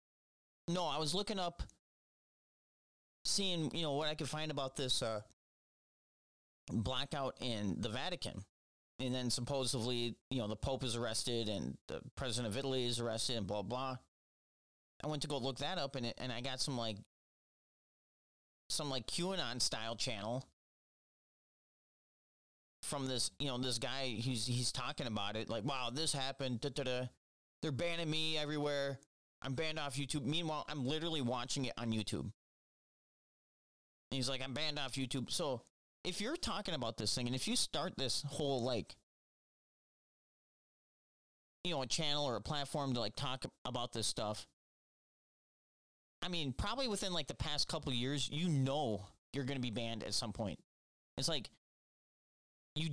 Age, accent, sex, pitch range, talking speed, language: 30-49, American, male, 115-150 Hz, 160 wpm, English